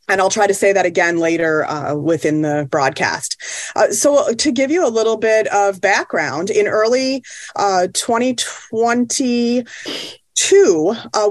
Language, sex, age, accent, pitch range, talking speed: English, female, 30-49, American, 180-225 Hz, 145 wpm